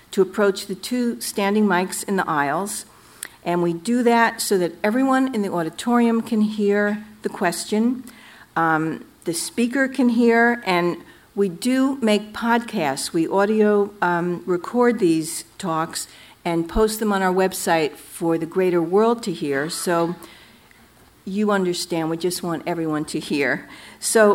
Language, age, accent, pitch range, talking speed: English, 50-69, American, 175-215 Hz, 150 wpm